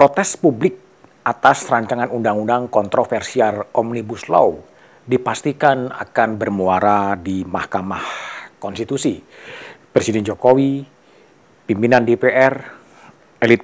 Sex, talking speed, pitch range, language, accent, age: male, 85 wpm, 105-130 Hz, Indonesian, native, 40-59